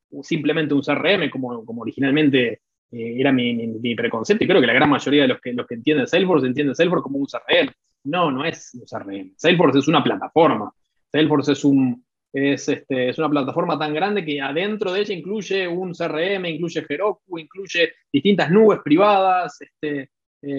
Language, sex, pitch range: Spanish, male, 135-195 Hz